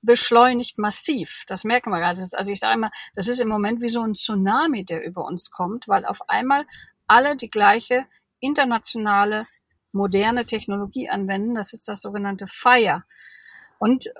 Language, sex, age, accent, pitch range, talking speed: German, female, 50-69, German, 200-235 Hz, 160 wpm